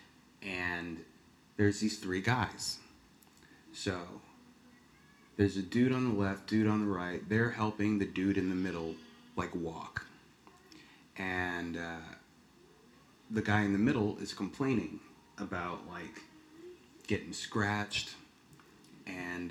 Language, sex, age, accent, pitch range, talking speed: English, male, 30-49, American, 95-110 Hz, 120 wpm